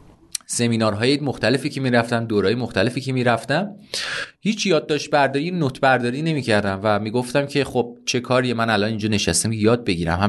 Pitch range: 100-130 Hz